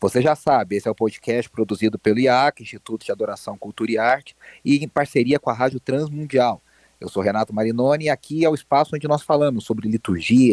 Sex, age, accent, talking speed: male, 30-49, Brazilian, 210 wpm